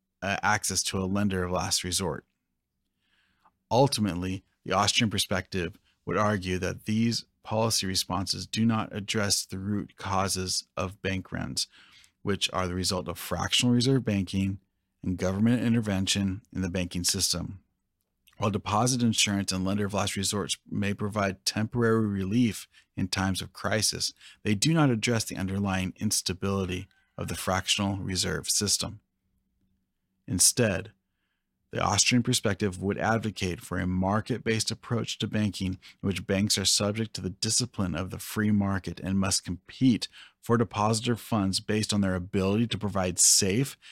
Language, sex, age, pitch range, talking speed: English, male, 30-49, 95-110 Hz, 145 wpm